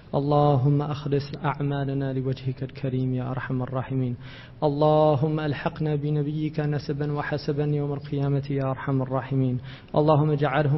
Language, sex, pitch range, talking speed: English, male, 135-155 Hz, 110 wpm